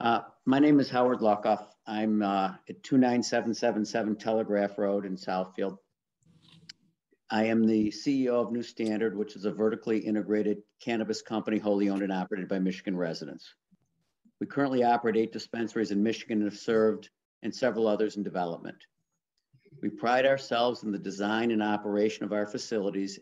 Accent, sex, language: American, male, English